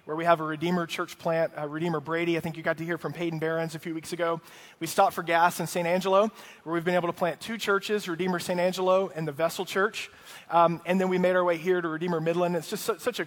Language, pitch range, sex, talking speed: English, 165-195 Hz, male, 270 wpm